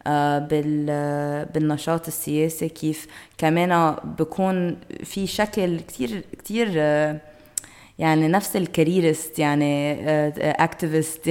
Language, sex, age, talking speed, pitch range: Arabic, female, 20-39, 75 wpm, 150-175 Hz